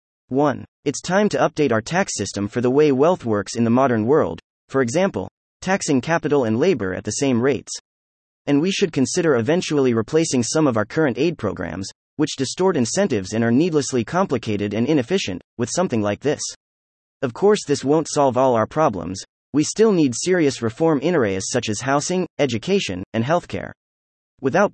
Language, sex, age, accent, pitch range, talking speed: English, male, 30-49, American, 105-155 Hz, 180 wpm